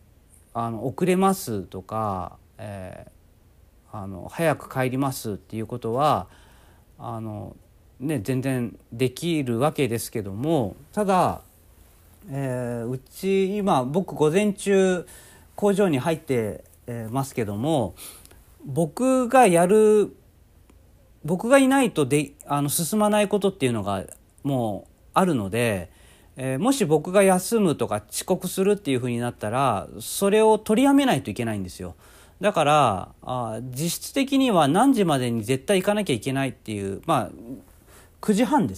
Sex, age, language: male, 40-59, Japanese